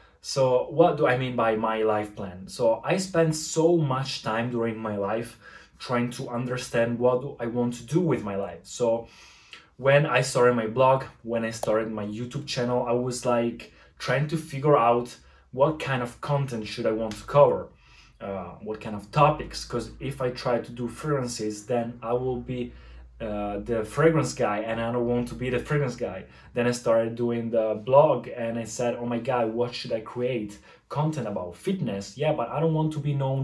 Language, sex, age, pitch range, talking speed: Italian, male, 20-39, 115-145 Hz, 205 wpm